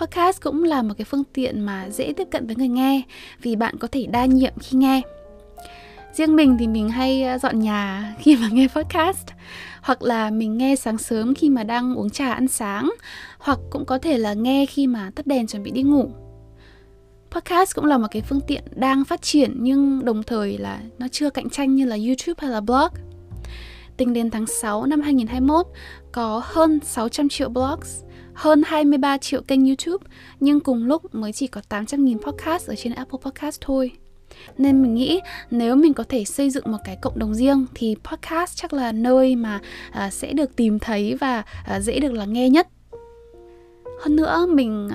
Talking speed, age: 195 wpm, 10-29